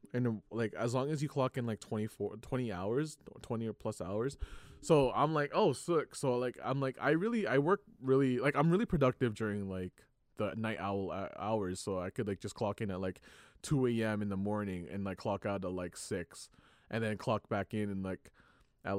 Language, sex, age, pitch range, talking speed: English, male, 20-39, 100-130 Hz, 220 wpm